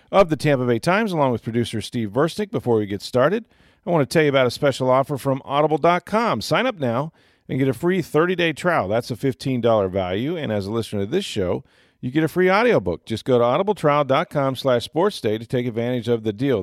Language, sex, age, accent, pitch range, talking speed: English, male, 40-59, American, 110-150 Hz, 225 wpm